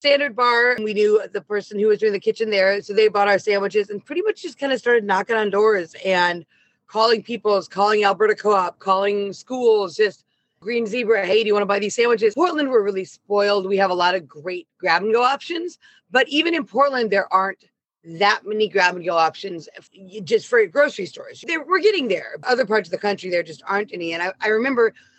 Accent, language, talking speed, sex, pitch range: American, English, 210 wpm, female, 200-250 Hz